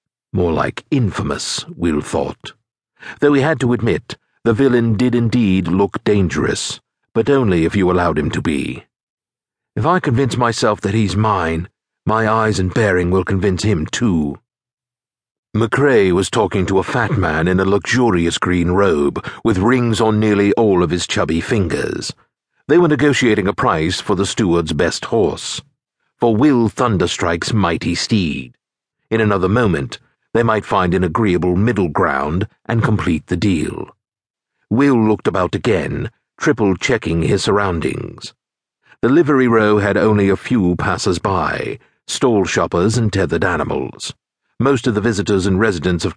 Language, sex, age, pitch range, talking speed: English, male, 50-69, 90-120 Hz, 150 wpm